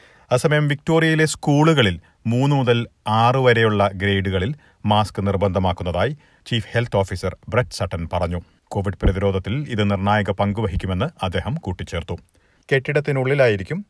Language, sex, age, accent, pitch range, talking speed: Malayalam, male, 40-59, native, 95-125 Hz, 105 wpm